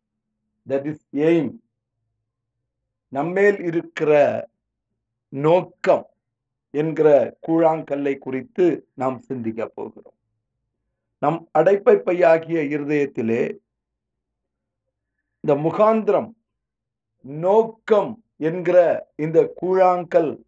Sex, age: male, 50-69